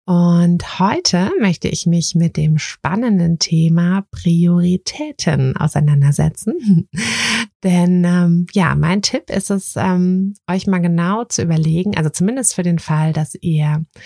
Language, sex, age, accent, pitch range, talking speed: German, female, 20-39, German, 150-180 Hz, 130 wpm